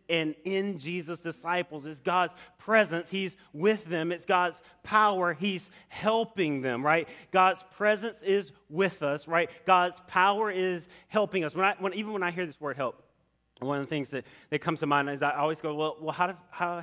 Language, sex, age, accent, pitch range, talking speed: English, male, 30-49, American, 145-195 Hz, 200 wpm